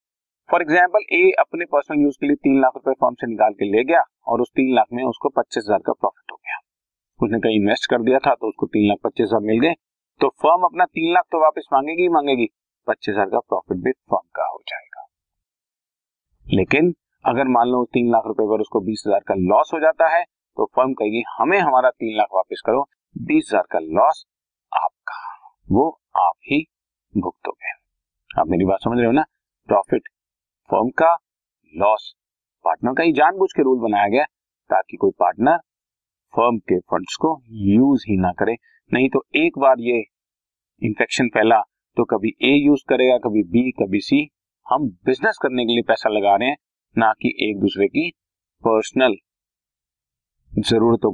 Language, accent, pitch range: Hindi, native, 110-155 Hz